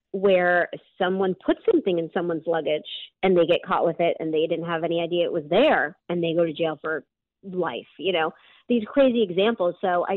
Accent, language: American, English